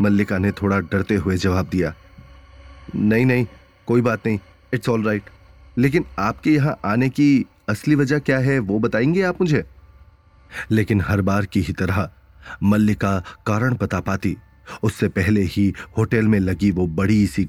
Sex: male